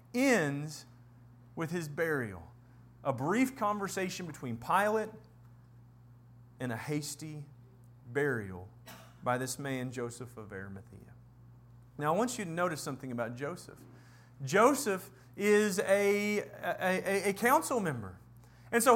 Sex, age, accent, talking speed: male, 40-59, American, 120 wpm